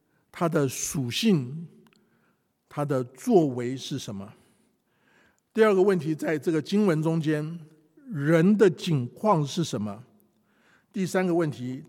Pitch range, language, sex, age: 130-180 Hz, Chinese, male, 50-69